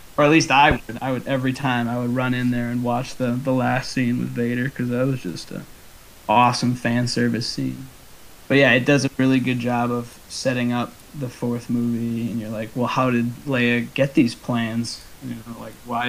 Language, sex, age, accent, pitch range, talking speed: English, male, 20-39, American, 120-135 Hz, 220 wpm